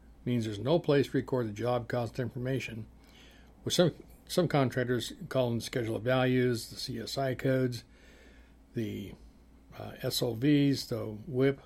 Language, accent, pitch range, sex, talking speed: English, American, 110-135 Hz, male, 145 wpm